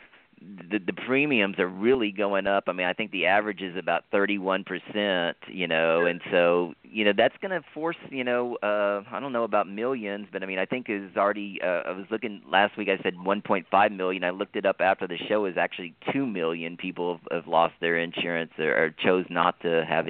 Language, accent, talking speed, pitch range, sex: English, American, 220 wpm, 90-110 Hz, male